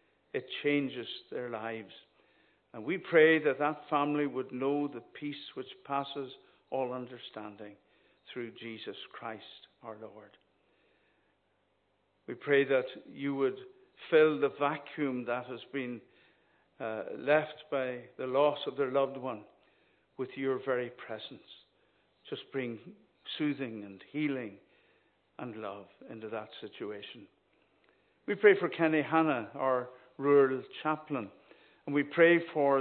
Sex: male